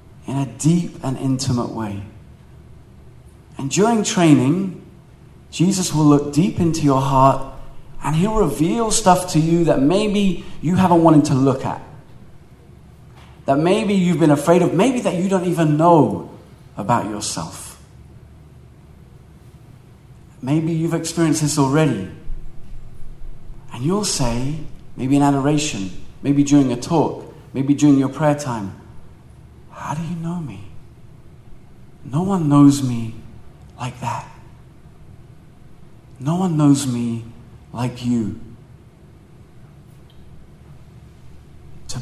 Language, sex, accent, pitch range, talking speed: English, male, British, 125-170 Hz, 115 wpm